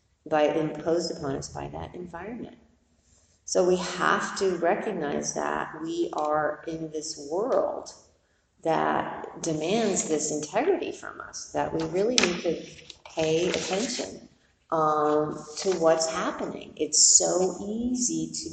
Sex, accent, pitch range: female, American, 145-185 Hz